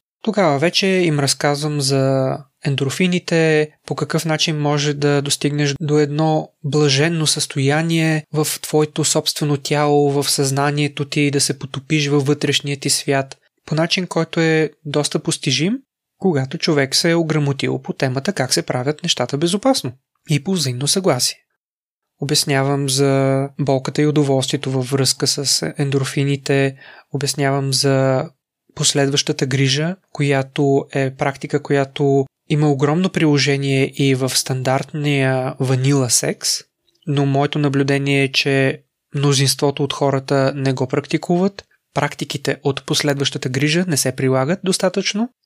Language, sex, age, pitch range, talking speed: Bulgarian, male, 20-39, 140-155 Hz, 125 wpm